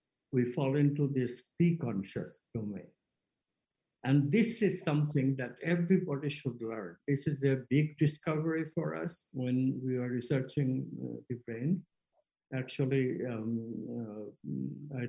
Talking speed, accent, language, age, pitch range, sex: 125 wpm, Indian, English, 60-79, 125-150 Hz, male